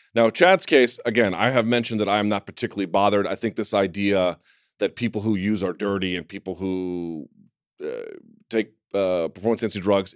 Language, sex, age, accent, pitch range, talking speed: English, male, 30-49, American, 95-125 Hz, 190 wpm